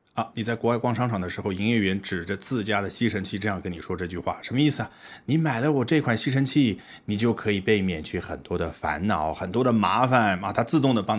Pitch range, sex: 95-140 Hz, male